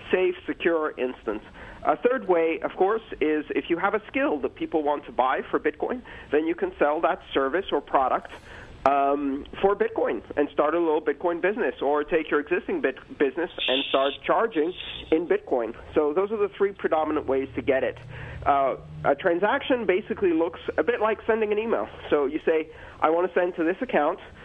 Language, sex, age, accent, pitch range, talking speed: English, male, 40-59, American, 145-210 Hz, 195 wpm